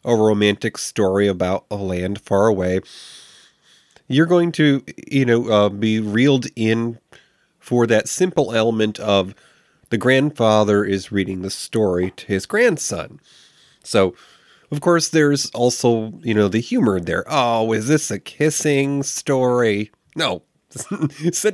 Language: English